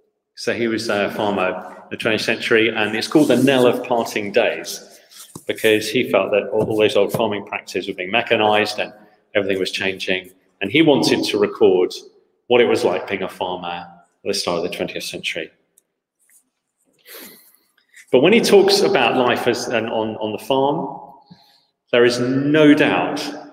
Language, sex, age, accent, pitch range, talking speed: English, male, 30-49, British, 105-135 Hz, 175 wpm